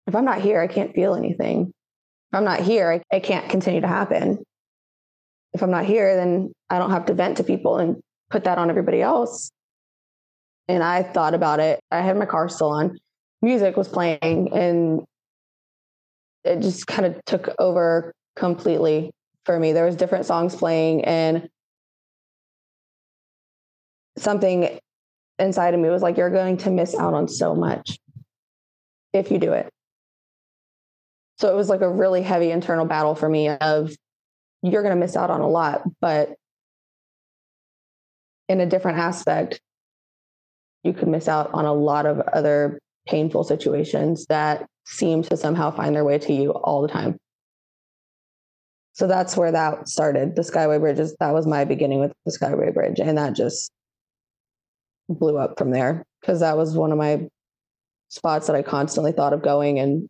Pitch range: 150-180 Hz